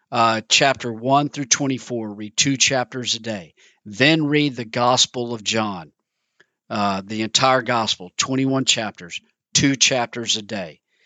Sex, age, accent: male, 50-69, American